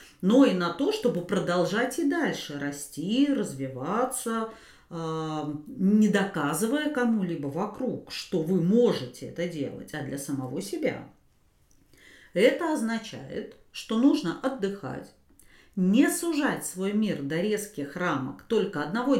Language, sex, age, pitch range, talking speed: Russian, female, 40-59, 155-245 Hz, 115 wpm